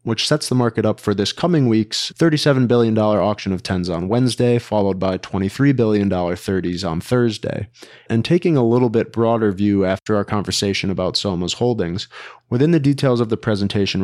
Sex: male